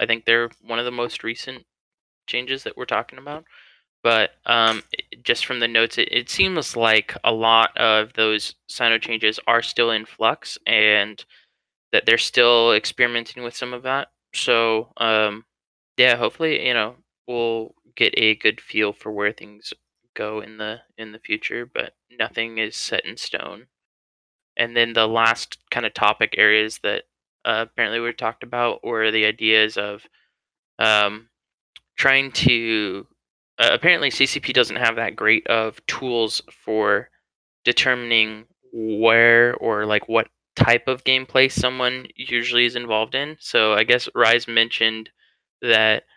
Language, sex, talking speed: English, male, 155 wpm